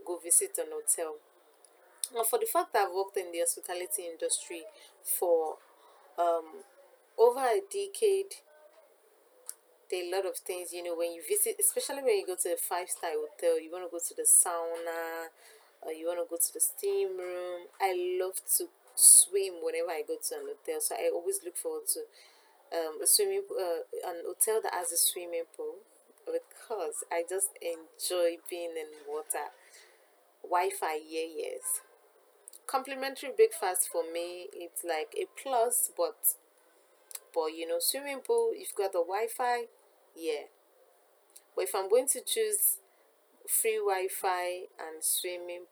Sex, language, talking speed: female, English, 160 wpm